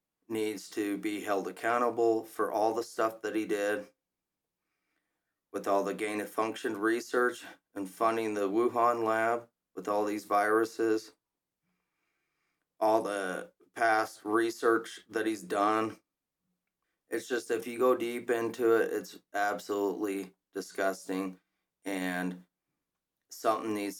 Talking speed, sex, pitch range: 120 wpm, male, 95-110 Hz